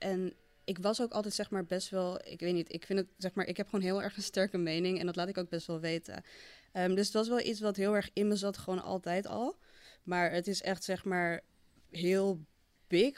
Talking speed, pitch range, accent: 255 wpm, 175-200 Hz, Dutch